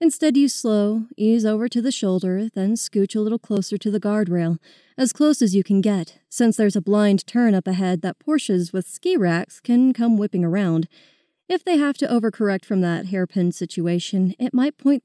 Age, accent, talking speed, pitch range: 30-49, American, 200 wpm, 185-240 Hz